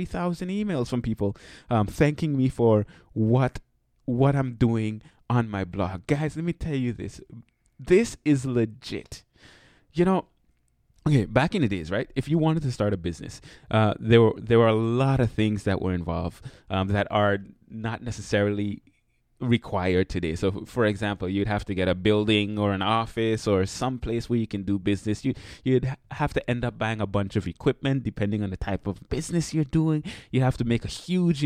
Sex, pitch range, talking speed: male, 105-145 Hz, 195 wpm